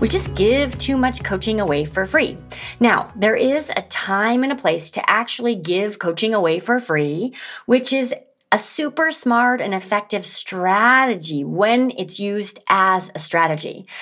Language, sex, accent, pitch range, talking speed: English, female, American, 180-245 Hz, 165 wpm